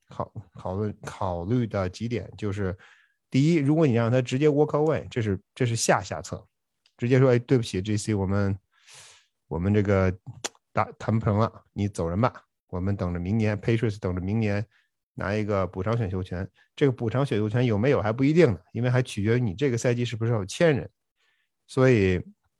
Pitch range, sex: 100-125 Hz, male